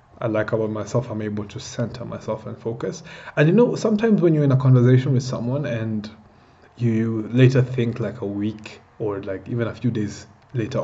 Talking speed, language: 200 wpm, English